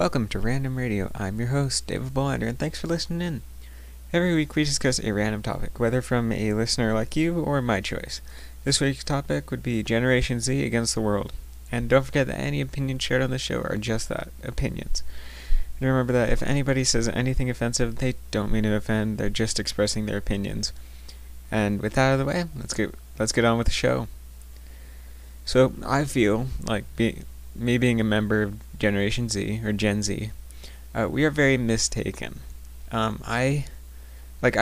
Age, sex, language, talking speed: 20-39, male, English, 190 wpm